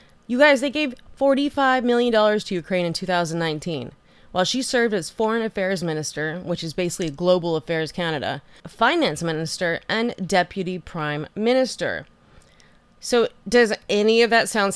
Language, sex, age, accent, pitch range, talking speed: English, female, 20-39, American, 175-240 Hz, 145 wpm